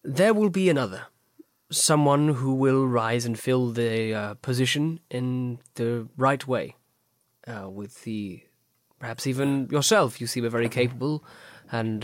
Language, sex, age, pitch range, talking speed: English, male, 20-39, 115-135 Hz, 145 wpm